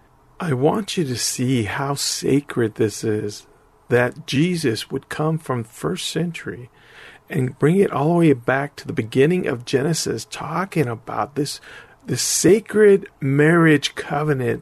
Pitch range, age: 135-175 Hz, 50-69